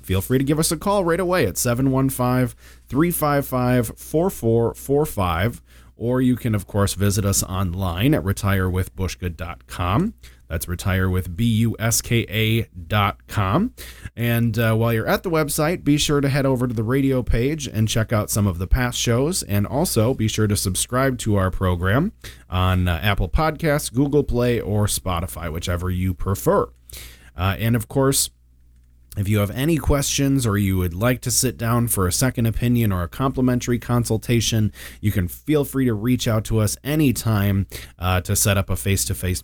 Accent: American